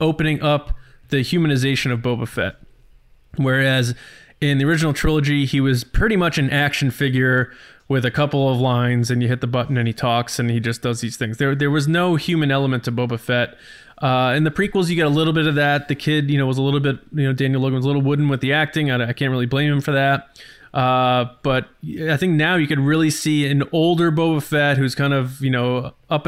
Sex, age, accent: male, 20-39, American